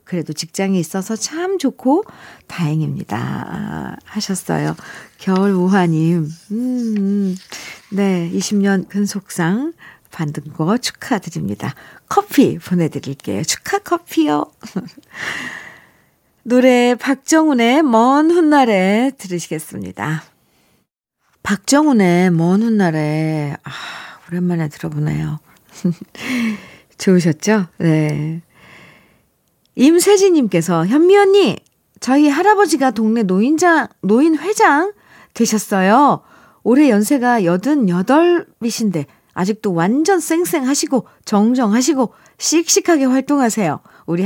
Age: 50-69